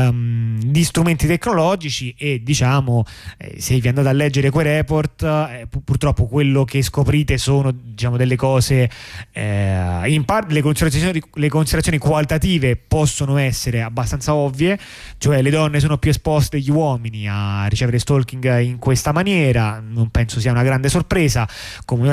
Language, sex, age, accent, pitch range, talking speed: Italian, male, 20-39, native, 115-150 Hz, 150 wpm